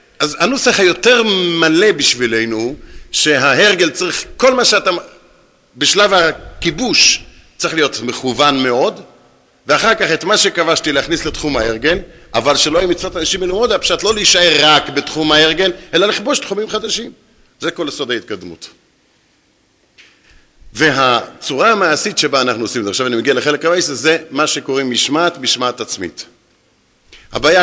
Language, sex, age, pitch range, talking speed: Hebrew, male, 50-69, 115-165 Hz, 135 wpm